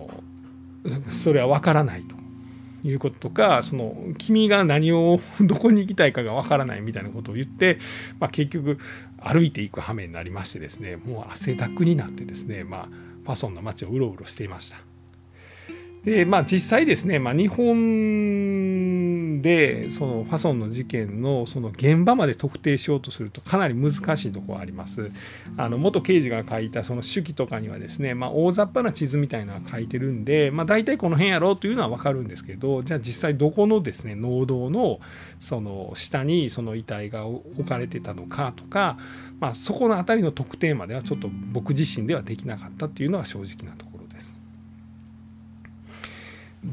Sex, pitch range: male, 110-170 Hz